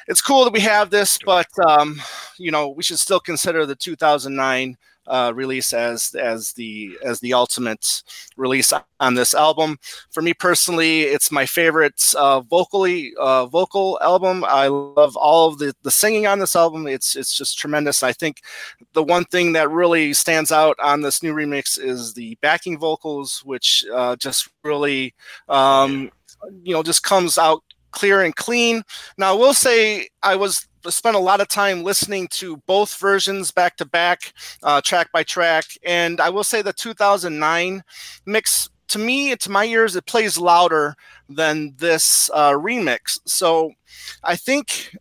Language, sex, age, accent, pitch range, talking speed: English, male, 30-49, American, 145-190 Hz, 170 wpm